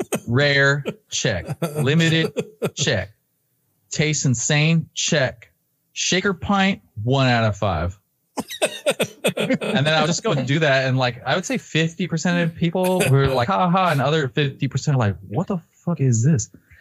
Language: English